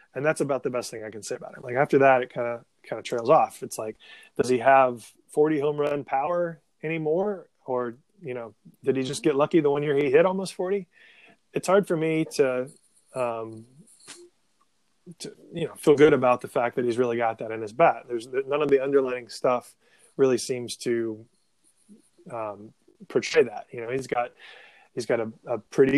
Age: 20-39